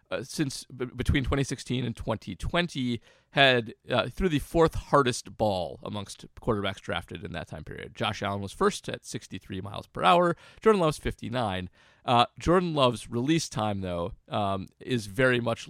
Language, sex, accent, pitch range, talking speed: English, male, American, 100-130 Hz, 160 wpm